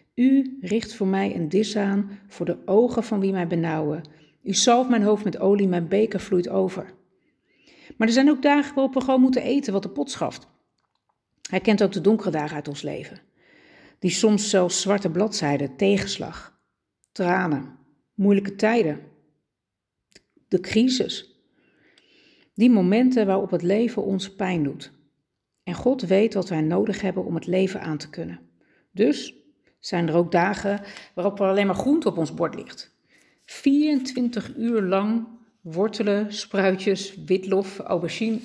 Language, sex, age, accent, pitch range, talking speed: Dutch, female, 50-69, Dutch, 175-225 Hz, 155 wpm